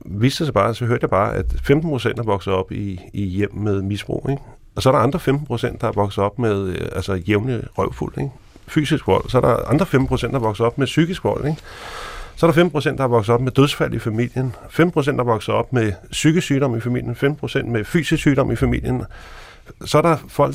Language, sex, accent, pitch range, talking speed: Danish, male, native, 110-145 Hz, 235 wpm